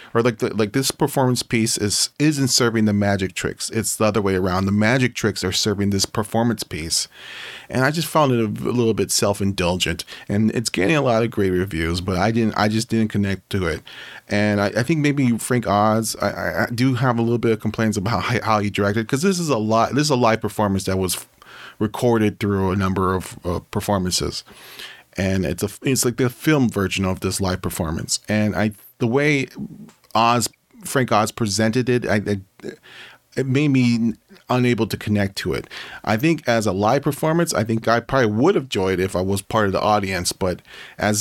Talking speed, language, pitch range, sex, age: 215 wpm, English, 95-120 Hz, male, 30-49